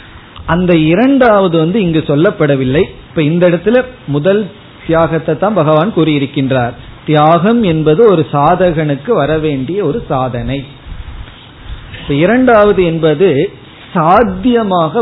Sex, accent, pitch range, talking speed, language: male, native, 140-180 Hz, 90 wpm, Tamil